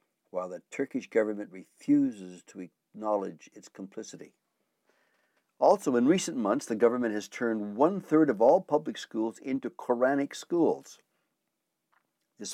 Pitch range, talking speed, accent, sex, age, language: 105-175 Hz, 125 wpm, American, male, 60-79, English